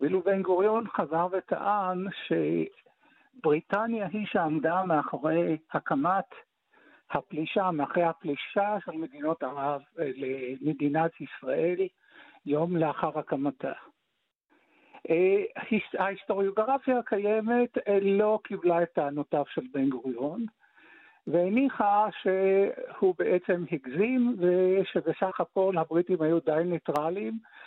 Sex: male